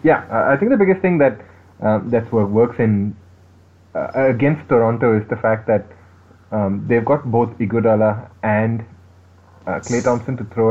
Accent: Indian